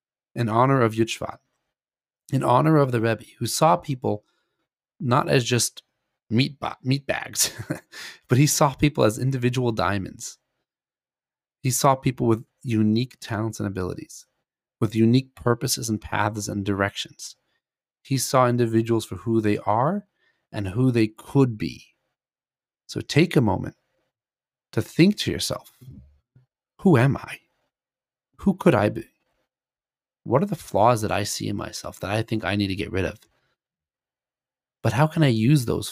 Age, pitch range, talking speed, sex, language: 40-59, 105-130 Hz, 155 wpm, male, English